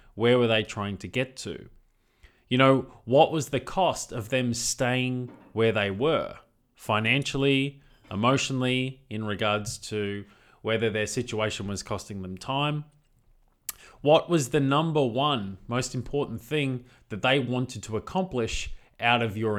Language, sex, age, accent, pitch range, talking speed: English, male, 20-39, Australian, 110-135 Hz, 145 wpm